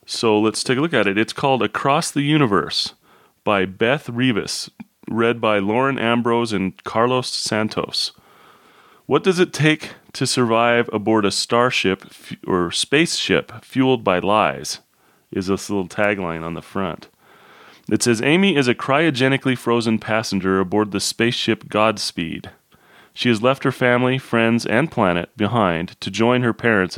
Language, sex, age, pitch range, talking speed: English, male, 30-49, 100-130 Hz, 150 wpm